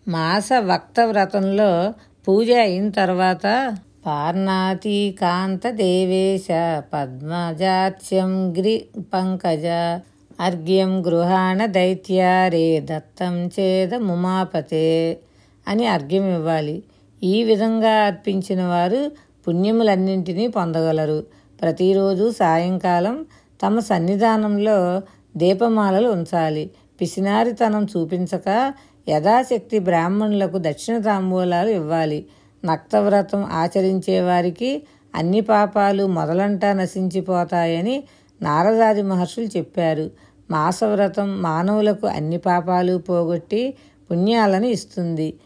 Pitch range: 170-210 Hz